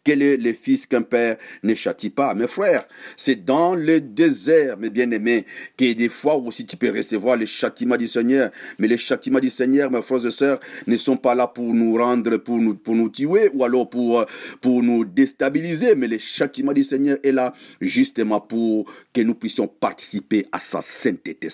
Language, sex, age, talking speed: French, male, 50-69, 200 wpm